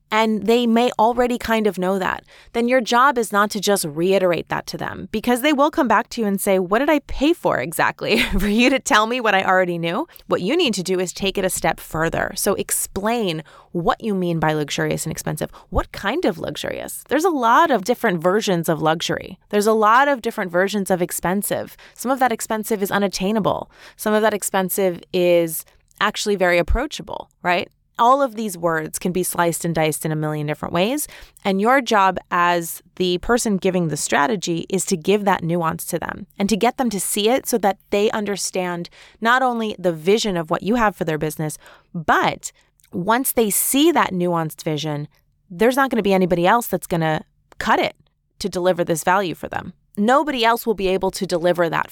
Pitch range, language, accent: 175-225 Hz, English, American